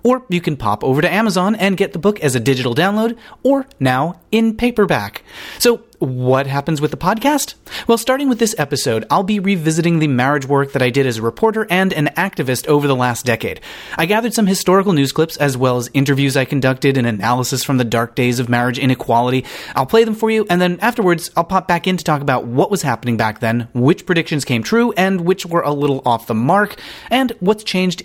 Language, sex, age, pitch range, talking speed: English, male, 30-49, 130-195 Hz, 225 wpm